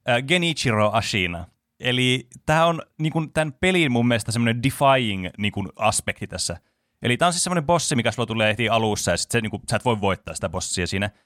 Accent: native